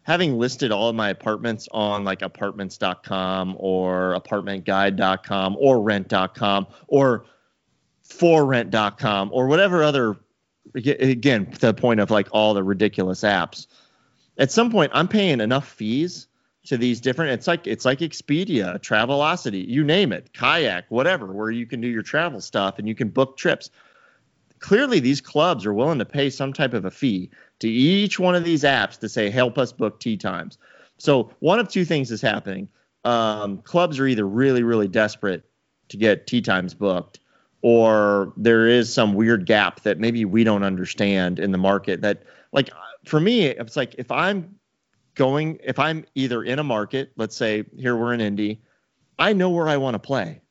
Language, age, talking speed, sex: English, 30-49, 175 wpm, male